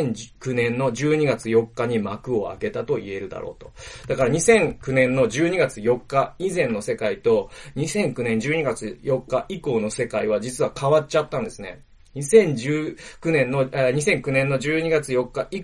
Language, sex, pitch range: Japanese, male, 135-215 Hz